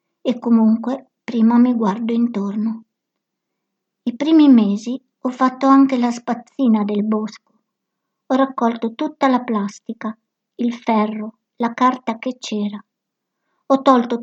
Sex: male